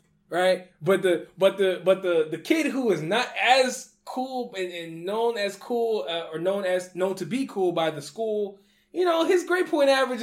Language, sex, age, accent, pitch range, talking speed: English, male, 20-39, American, 165-225 Hz, 210 wpm